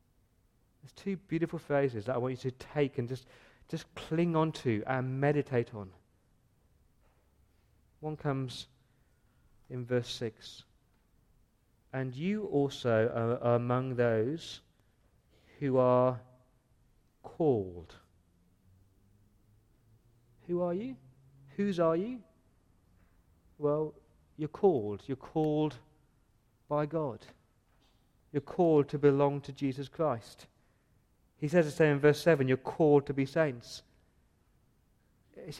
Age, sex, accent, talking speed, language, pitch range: 40-59, male, British, 110 wpm, English, 115-160 Hz